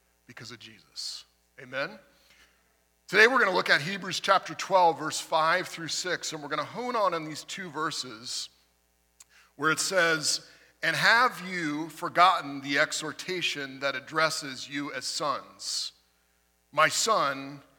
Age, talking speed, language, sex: 40-59, 145 wpm, English, male